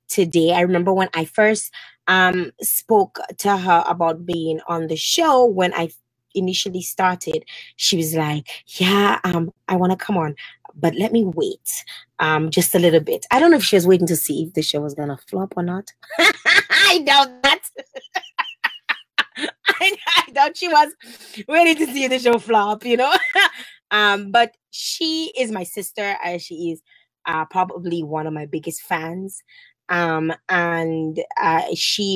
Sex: female